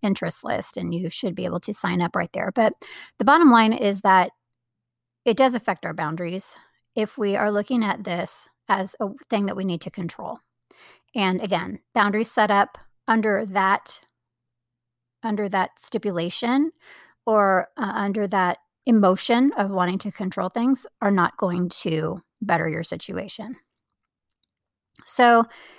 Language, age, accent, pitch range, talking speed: English, 30-49, American, 185-230 Hz, 150 wpm